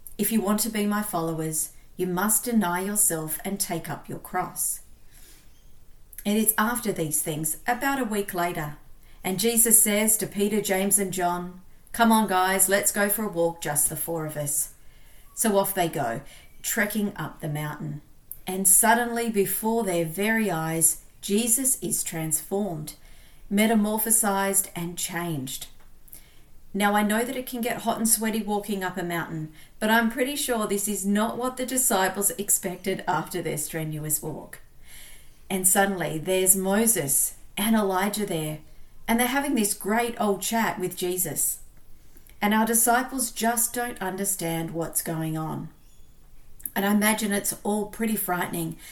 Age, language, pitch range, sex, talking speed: 40-59, English, 170-220 Hz, female, 155 wpm